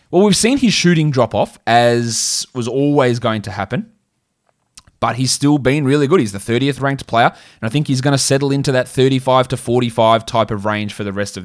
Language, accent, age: English, Australian, 20-39